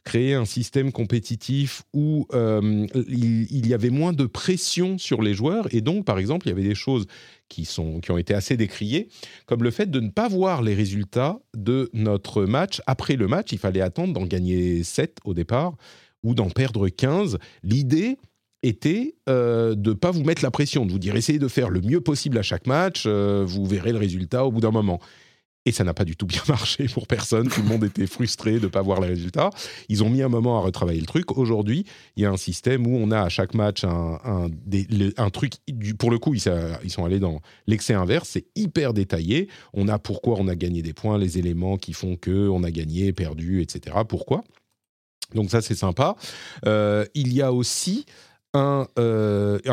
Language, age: French, 40-59